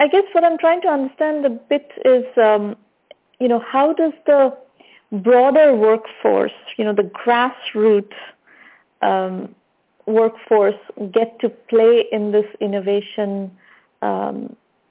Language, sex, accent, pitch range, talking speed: English, female, Indian, 205-260 Hz, 125 wpm